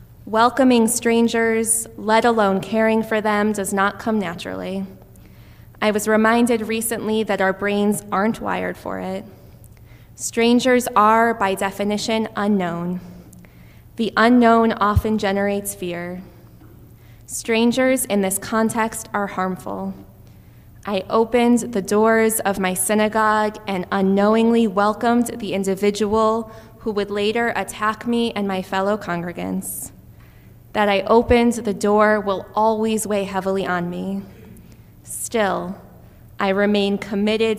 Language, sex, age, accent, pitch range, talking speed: English, female, 20-39, American, 180-220 Hz, 120 wpm